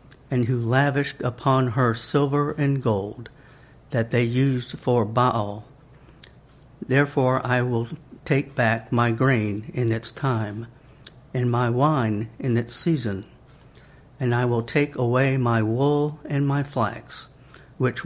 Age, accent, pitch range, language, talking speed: 60-79, American, 115-135 Hz, English, 135 wpm